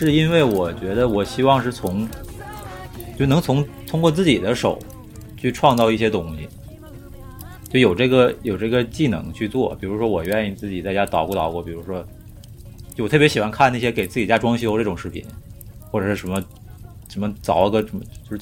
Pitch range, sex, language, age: 95-115 Hz, male, Chinese, 30-49